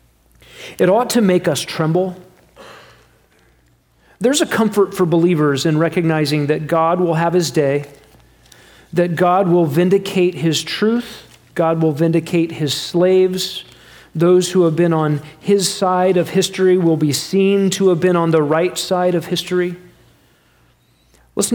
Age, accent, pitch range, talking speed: 40-59, American, 150-185 Hz, 145 wpm